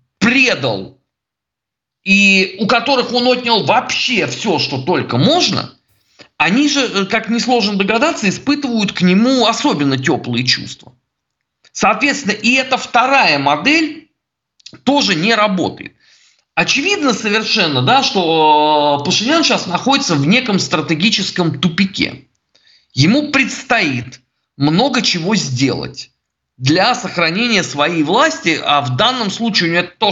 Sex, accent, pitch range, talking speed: male, native, 150-235 Hz, 115 wpm